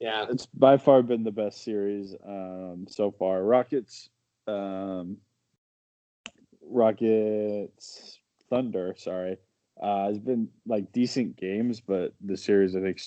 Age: 20-39